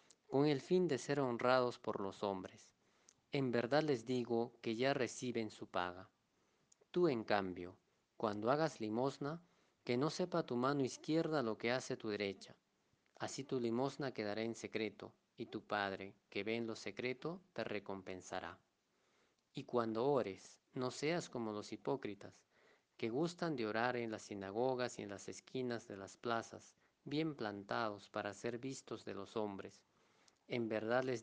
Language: Spanish